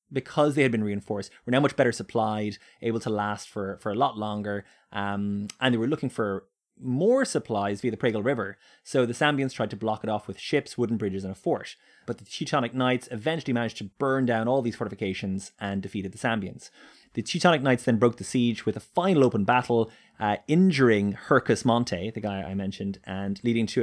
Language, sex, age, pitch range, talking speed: English, male, 20-39, 105-140 Hz, 210 wpm